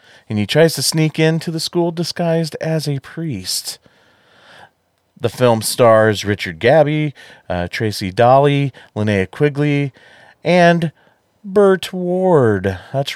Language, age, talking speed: English, 30-49, 120 wpm